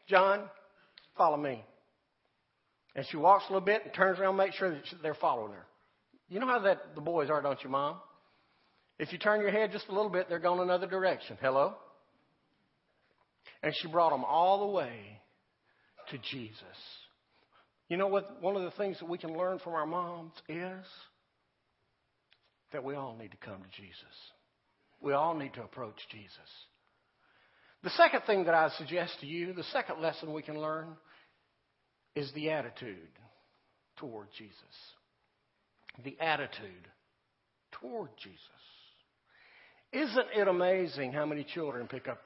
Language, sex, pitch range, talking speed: English, male, 145-195 Hz, 160 wpm